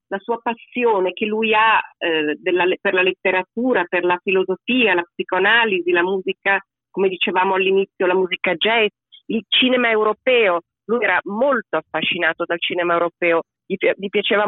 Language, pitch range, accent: Italian, 185-240 Hz, native